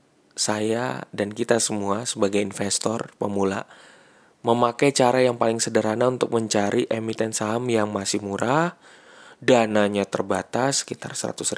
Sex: male